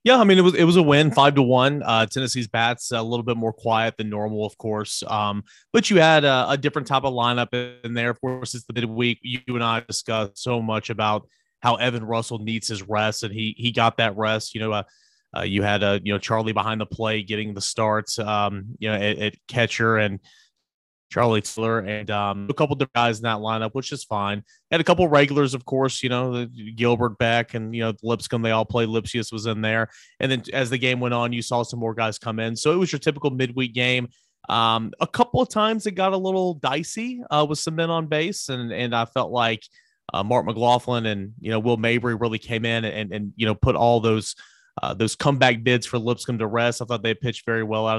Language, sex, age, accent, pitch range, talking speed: English, male, 30-49, American, 110-130 Hz, 245 wpm